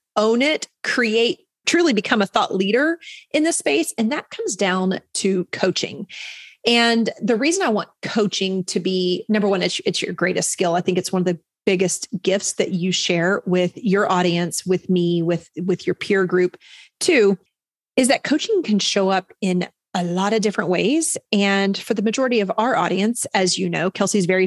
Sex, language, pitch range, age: female, English, 180-220 Hz, 30-49